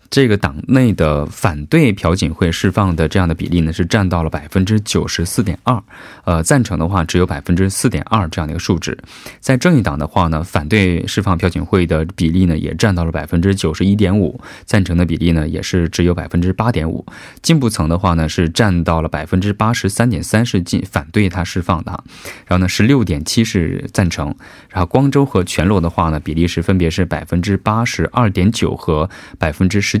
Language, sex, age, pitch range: Korean, male, 20-39, 85-105 Hz